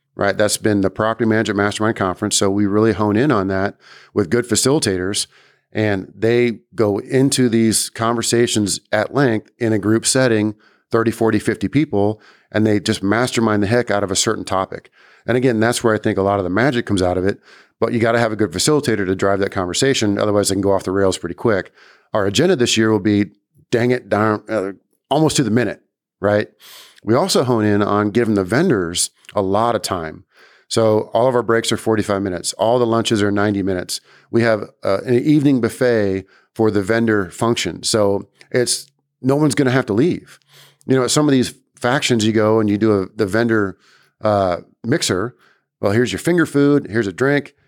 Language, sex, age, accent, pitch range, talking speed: English, male, 40-59, American, 100-120 Hz, 210 wpm